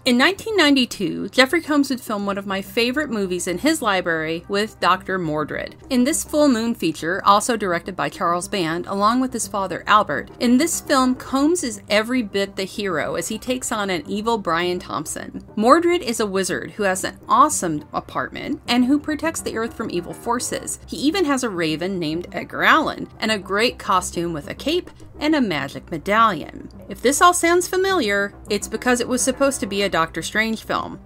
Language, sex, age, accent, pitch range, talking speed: English, female, 40-59, American, 185-265 Hz, 195 wpm